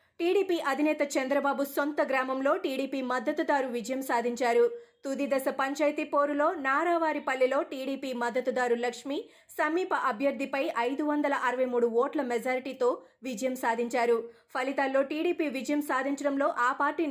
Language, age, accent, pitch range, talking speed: Telugu, 20-39, native, 250-295 Hz, 110 wpm